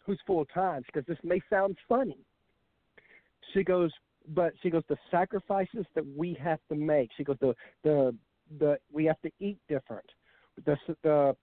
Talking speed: 175 wpm